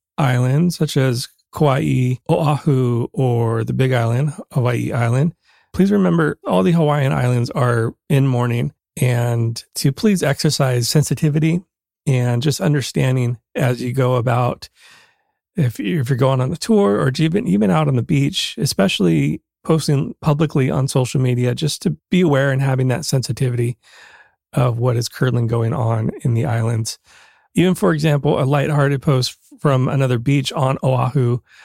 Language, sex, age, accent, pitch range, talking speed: English, male, 30-49, American, 125-155 Hz, 150 wpm